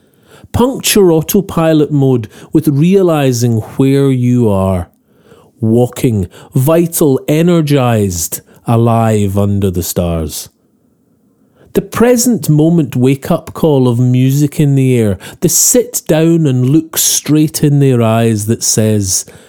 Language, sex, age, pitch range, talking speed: English, male, 40-59, 110-165 Hz, 115 wpm